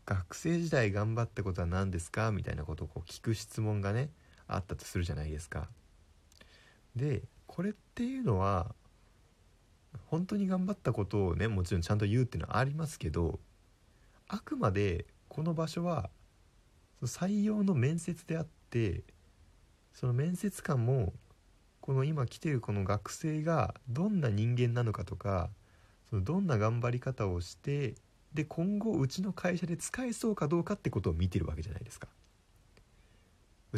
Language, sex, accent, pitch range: Japanese, male, native, 95-145 Hz